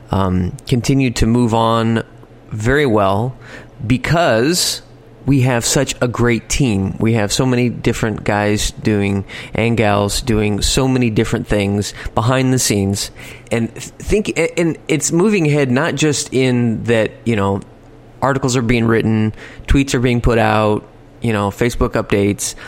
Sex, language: male, English